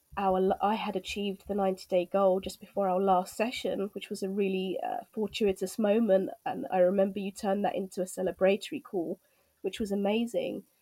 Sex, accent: female, British